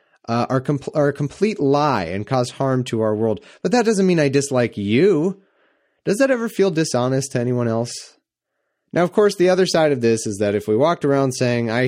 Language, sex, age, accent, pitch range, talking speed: English, male, 30-49, American, 110-150 Hz, 215 wpm